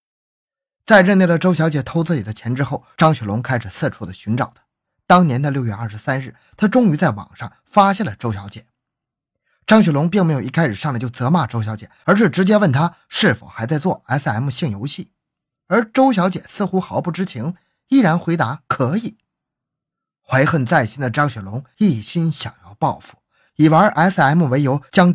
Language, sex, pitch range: Chinese, male, 120-185 Hz